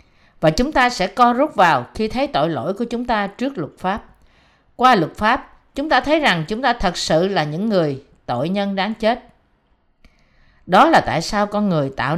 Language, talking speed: Vietnamese, 205 wpm